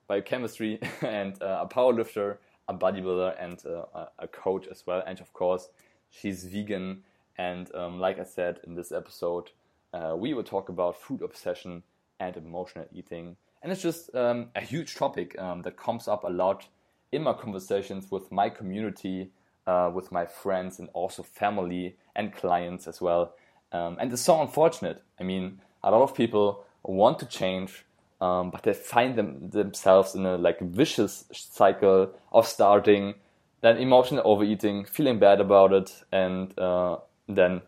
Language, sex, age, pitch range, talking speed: English, male, 20-39, 90-100 Hz, 165 wpm